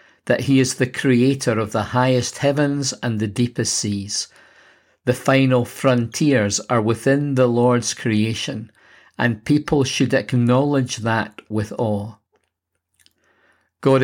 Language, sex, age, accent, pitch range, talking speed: English, male, 50-69, British, 110-130 Hz, 125 wpm